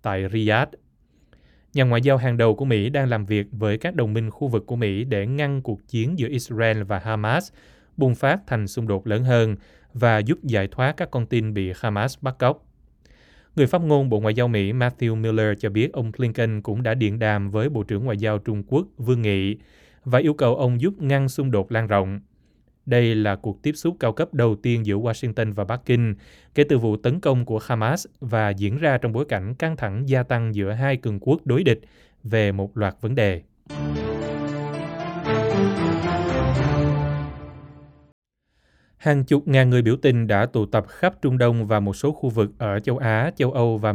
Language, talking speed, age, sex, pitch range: Vietnamese, 200 wpm, 20-39, male, 105-130 Hz